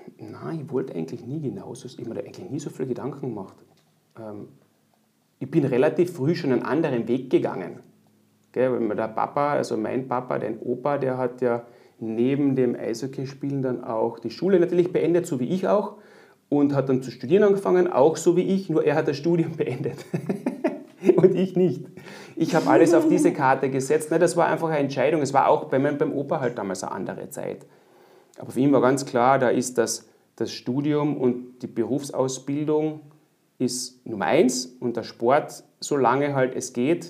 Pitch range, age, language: 125-165 Hz, 30-49, German